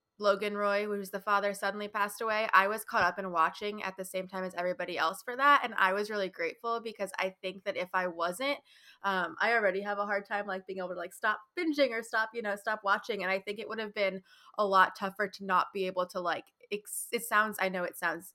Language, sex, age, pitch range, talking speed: English, female, 20-39, 185-210 Hz, 250 wpm